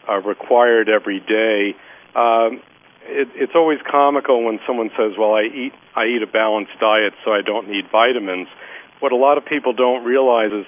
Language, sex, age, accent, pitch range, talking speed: English, male, 50-69, American, 110-130 Hz, 185 wpm